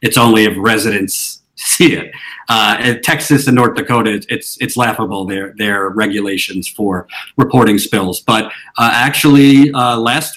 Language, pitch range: English, 115-140 Hz